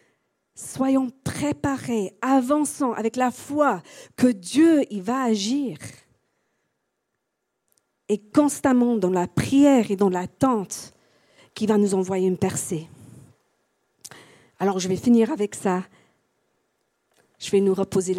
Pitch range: 185-230 Hz